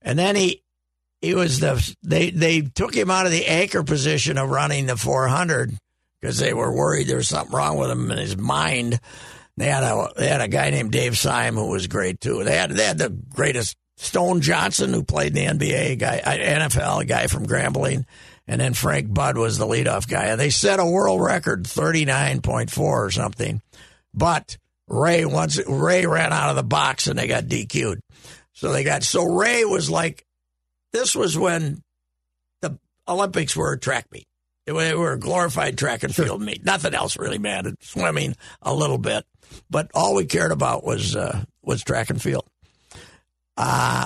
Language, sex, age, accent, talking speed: English, male, 50-69, American, 195 wpm